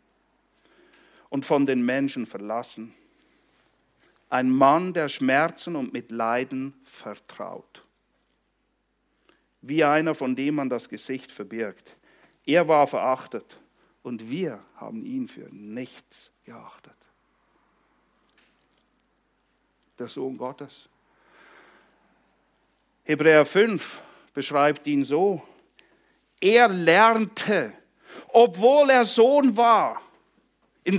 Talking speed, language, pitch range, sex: 90 wpm, English, 130-215 Hz, male